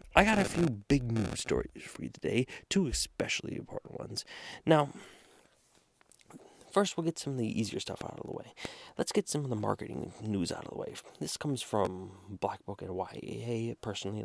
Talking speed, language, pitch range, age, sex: 195 wpm, English, 100-140 Hz, 30-49, male